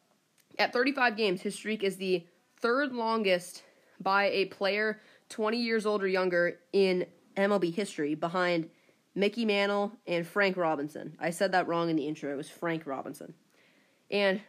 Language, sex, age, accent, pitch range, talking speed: English, female, 20-39, American, 170-205 Hz, 155 wpm